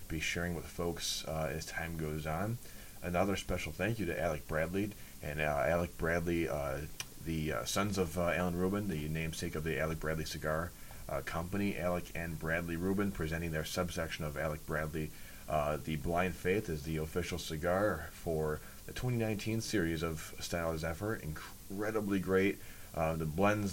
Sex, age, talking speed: male, 30-49, 170 wpm